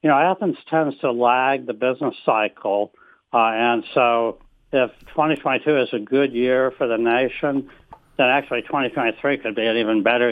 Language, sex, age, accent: English, male, 60-79, American